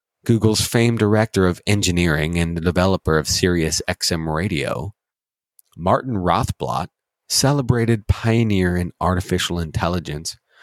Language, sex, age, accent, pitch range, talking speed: English, male, 30-49, American, 90-115 Hz, 105 wpm